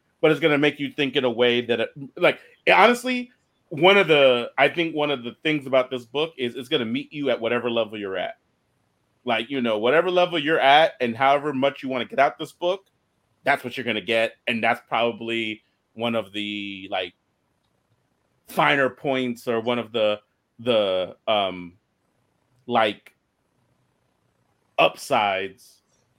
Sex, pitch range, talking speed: male, 125-170 Hz, 175 wpm